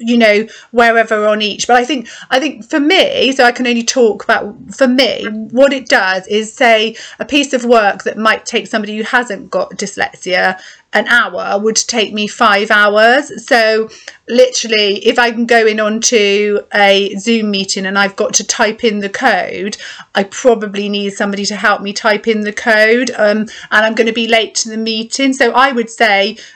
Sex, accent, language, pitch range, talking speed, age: female, British, English, 215-255 Hz, 200 wpm, 30-49